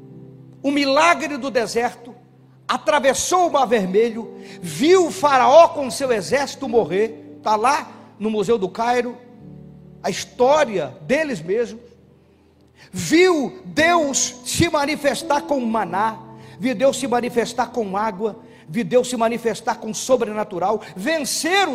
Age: 50-69